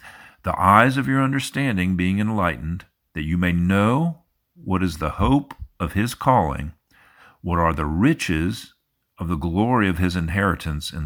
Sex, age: male, 50-69